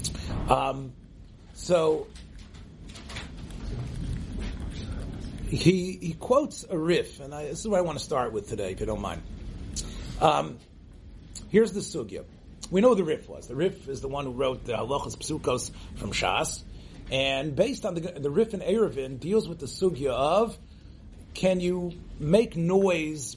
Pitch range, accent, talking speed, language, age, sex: 130-185 Hz, American, 160 wpm, English, 40-59, male